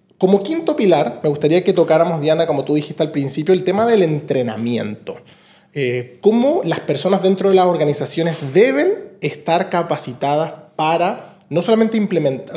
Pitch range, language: 135-175 Hz, Spanish